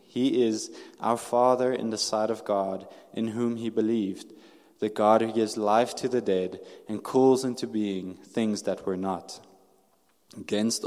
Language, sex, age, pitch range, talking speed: English, male, 20-39, 100-120 Hz, 165 wpm